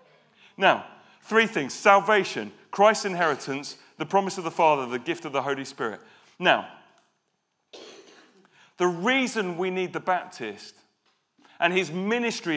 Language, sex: English, male